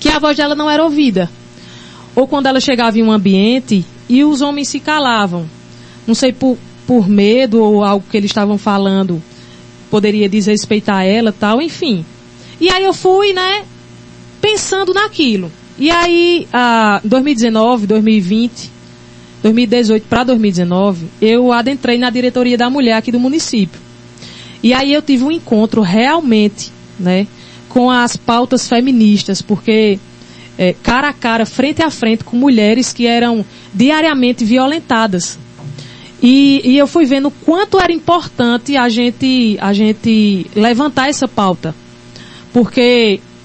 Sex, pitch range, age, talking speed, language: female, 195-255 Hz, 20-39, 140 wpm, Portuguese